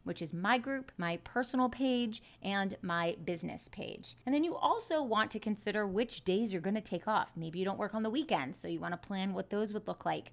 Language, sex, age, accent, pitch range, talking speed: English, female, 30-49, American, 180-225 Hz, 230 wpm